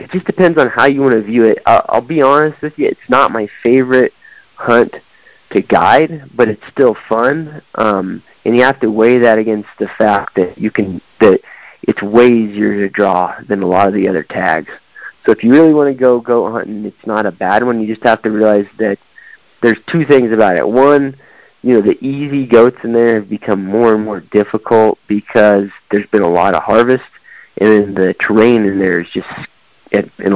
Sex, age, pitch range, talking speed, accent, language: male, 30-49, 105-125 Hz, 215 wpm, American, English